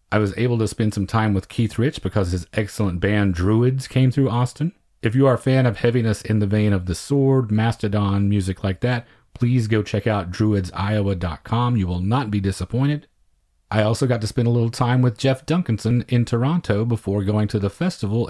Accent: American